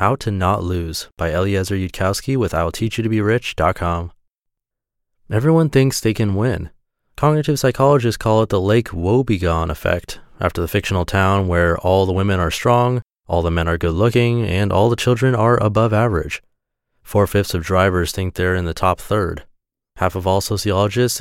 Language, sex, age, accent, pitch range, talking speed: English, male, 30-49, American, 95-120 Hz, 165 wpm